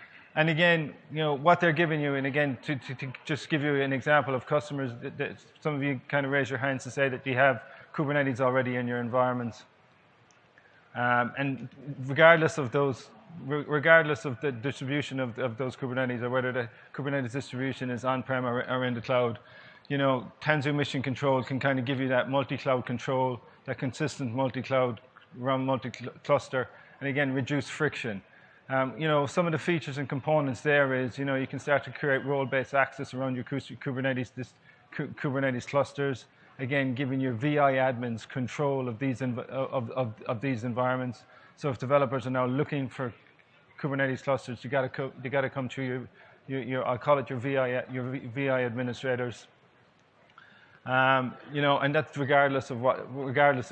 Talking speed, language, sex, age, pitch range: 180 wpm, English, male, 20-39, 125-140 Hz